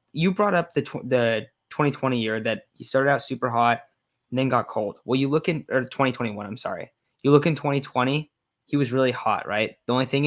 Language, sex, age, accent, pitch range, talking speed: English, male, 20-39, American, 120-140 Hz, 220 wpm